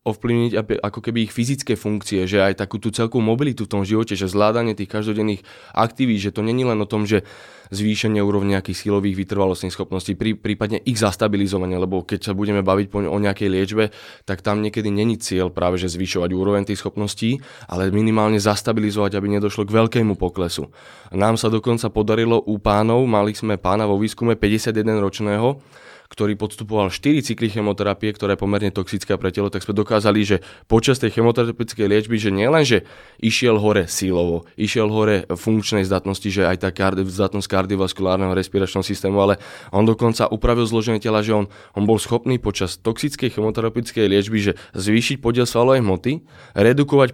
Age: 20-39